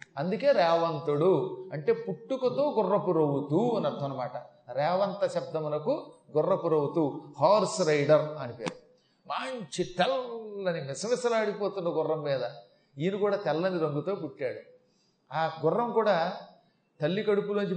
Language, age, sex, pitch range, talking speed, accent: Telugu, 30-49, male, 160-210 Hz, 100 wpm, native